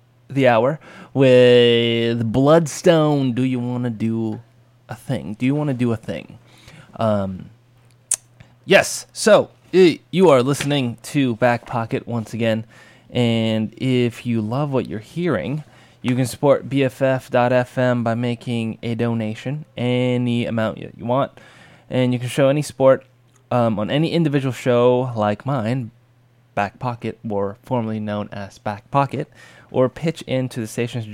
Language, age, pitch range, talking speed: English, 20-39, 110-130 Hz, 145 wpm